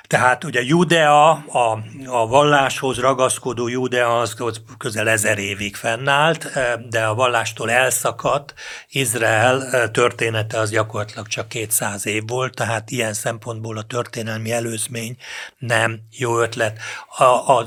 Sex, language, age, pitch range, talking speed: male, Hungarian, 60-79, 115-130 Hz, 125 wpm